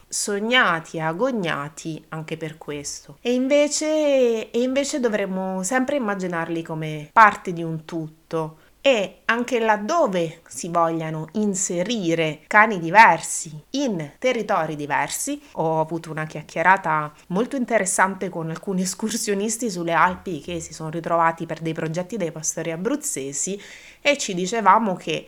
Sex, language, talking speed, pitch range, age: female, Italian, 125 wpm, 160-215 Hz, 30-49